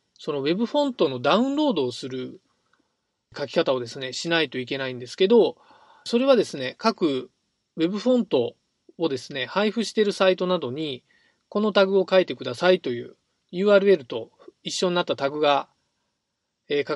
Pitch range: 150-230 Hz